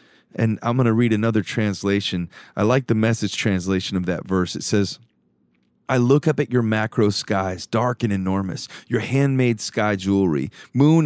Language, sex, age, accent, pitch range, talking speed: English, male, 30-49, American, 95-125 Hz, 175 wpm